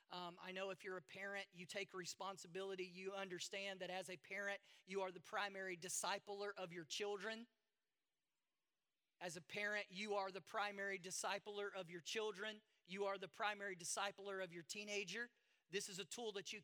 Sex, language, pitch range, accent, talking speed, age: male, English, 185-215 Hz, American, 175 wpm, 40-59